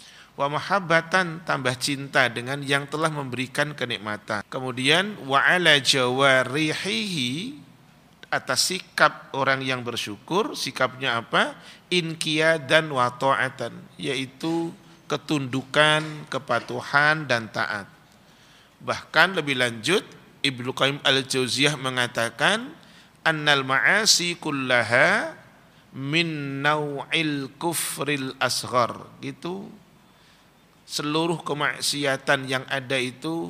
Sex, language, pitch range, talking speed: male, Indonesian, 125-150 Hz, 85 wpm